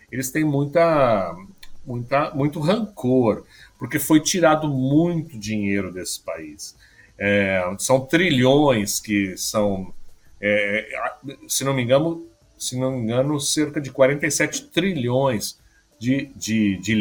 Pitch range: 105-145 Hz